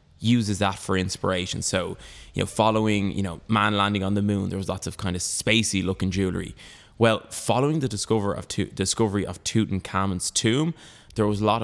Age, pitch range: 20-39, 95-110 Hz